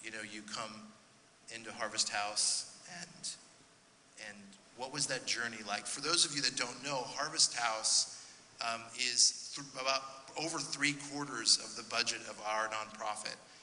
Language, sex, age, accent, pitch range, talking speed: English, male, 40-59, American, 110-125 Hz, 160 wpm